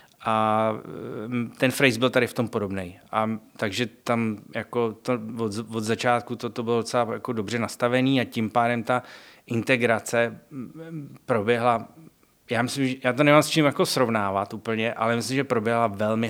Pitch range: 105-125 Hz